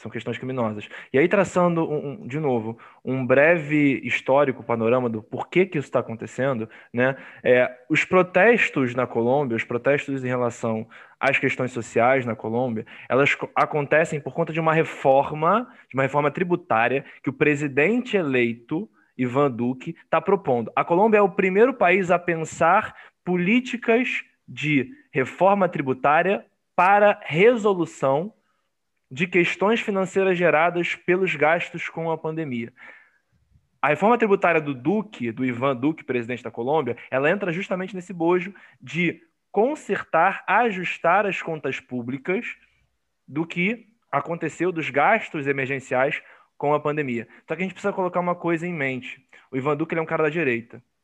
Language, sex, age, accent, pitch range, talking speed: Portuguese, male, 20-39, Brazilian, 125-175 Hz, 150 wpm